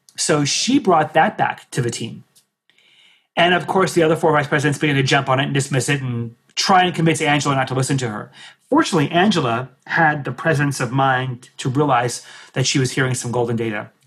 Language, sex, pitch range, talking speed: English, male, 130-160 Hz, 215 wpm